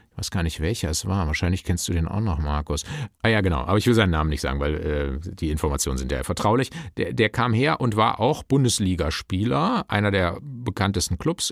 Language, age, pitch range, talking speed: German, 50-69, 95-140 Hz, 225 wpm